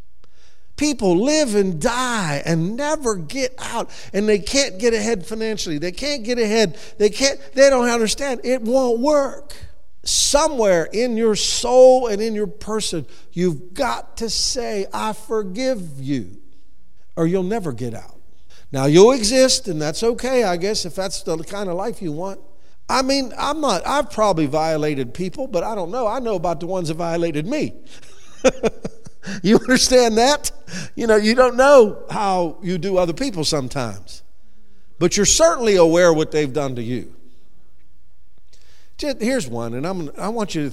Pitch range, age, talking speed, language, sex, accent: 135-230 Hz, 50-69, 170 wpm, English, male, American